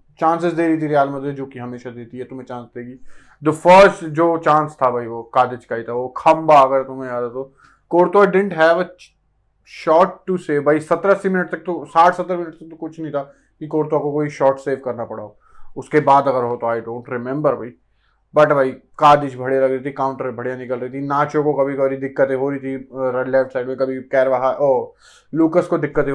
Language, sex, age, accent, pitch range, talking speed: Hindi, male, 20-39, native, 125-150 Hz, 210 wpm